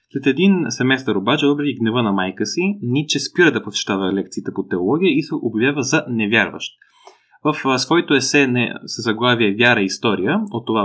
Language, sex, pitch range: Bulgarian, male, 115-155 Hz